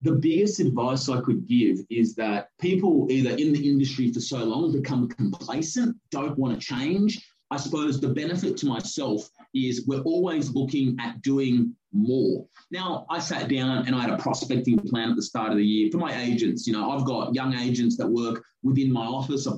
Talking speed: 200 wpm